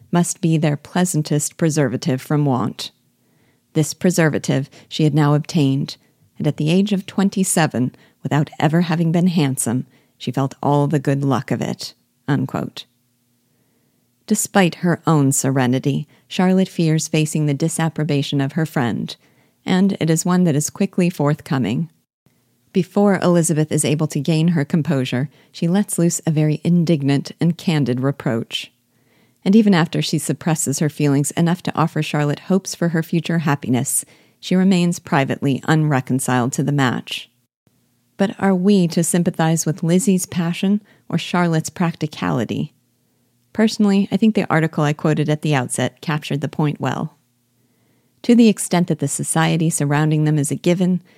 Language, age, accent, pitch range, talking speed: English, 40-59, American, 140-175 Hz, 150 wpm